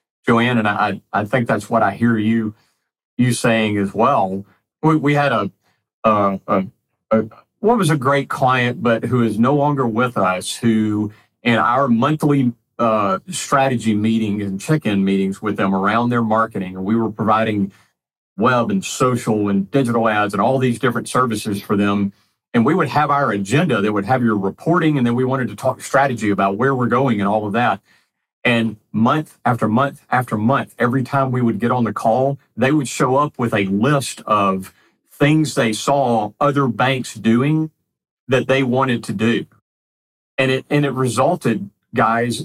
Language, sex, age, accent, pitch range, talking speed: English, male, 40-59, American, 110-135 Hz, 185 wpm